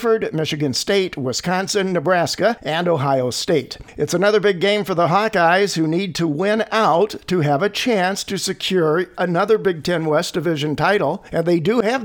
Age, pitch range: 50-69, 160-195 Hz